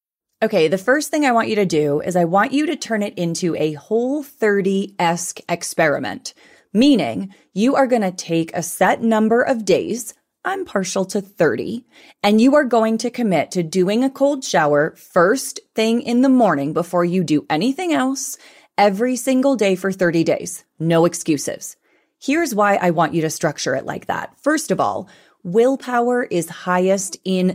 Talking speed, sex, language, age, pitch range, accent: 180 wpm, female, English, 30-49, 175-240 Hz, American